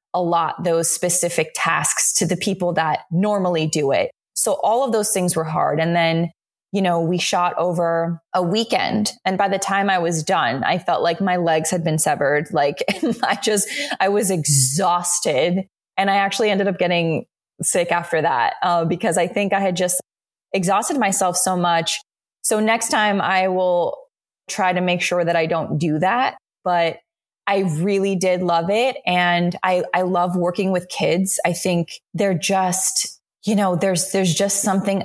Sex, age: female, 20-39